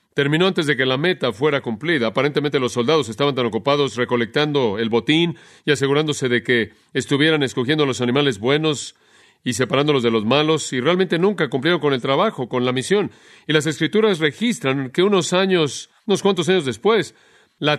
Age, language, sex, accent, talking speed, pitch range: 40-59, Spanish, male, Mexican, 180 wpm, 125-160 Hz